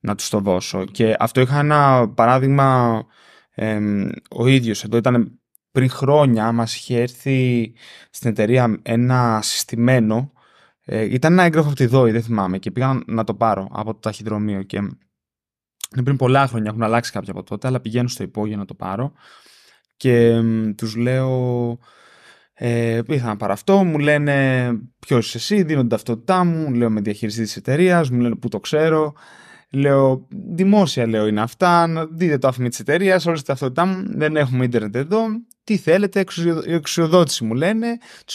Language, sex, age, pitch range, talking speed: Greek, male, 20-39, 115-180 Hz, 170 wpm